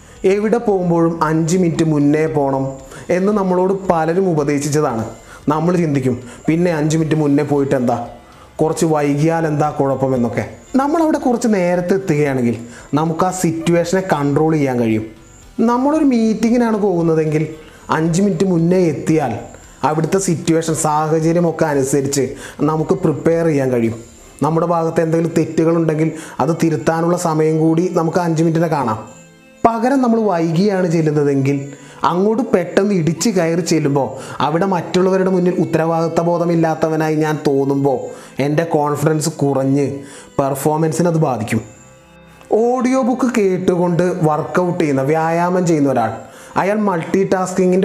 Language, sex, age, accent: Malayalam, male, 30-49, native